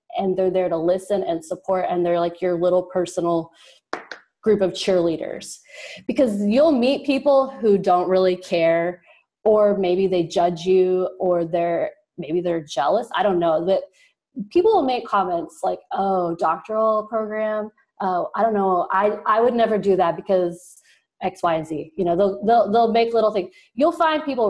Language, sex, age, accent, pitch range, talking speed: English, female, 20-39, American, 180-230 Hz, 175 wpm